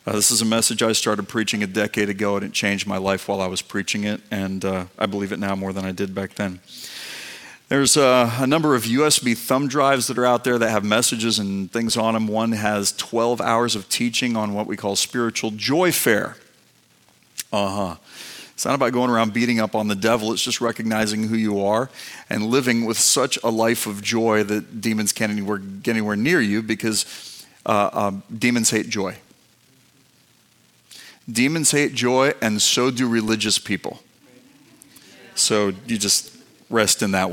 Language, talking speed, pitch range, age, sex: English, 190 wpm, 100-115 Hz, 40-59, male